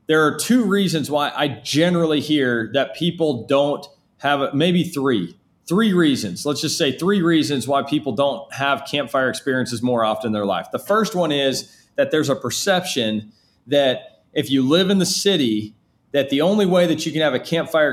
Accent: American